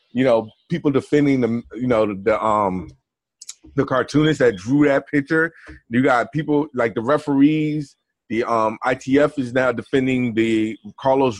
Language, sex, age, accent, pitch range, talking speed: English, male, 30-49, American, 115-140 Hz, 160 wpm